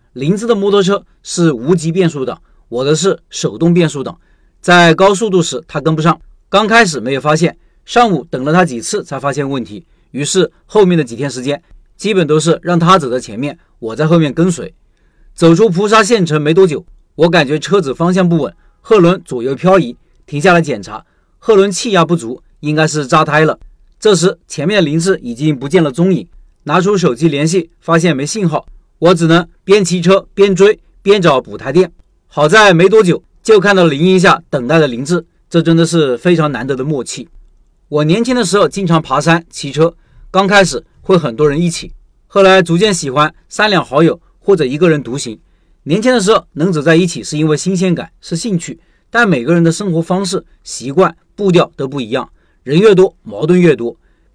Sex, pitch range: male, 150-190 Hz